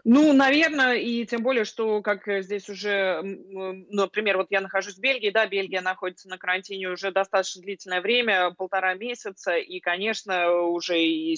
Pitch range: 175-200 Hz